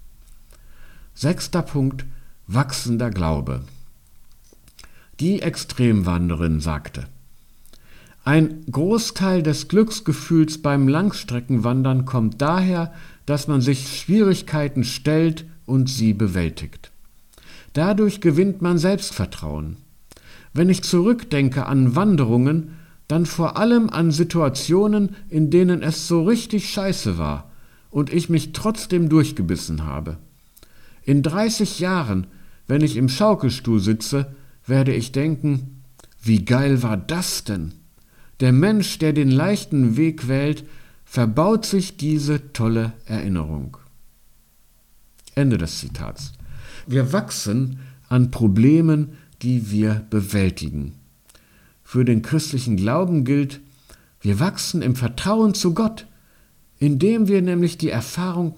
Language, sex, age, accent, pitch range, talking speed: German, male, 50-69, German, 115-170 Hz, 105 wpm